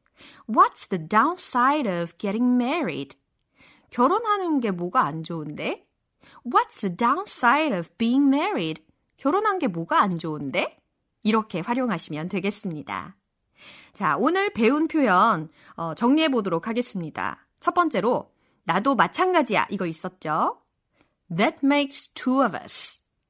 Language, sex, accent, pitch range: Korean, female, native, 180-290 Hz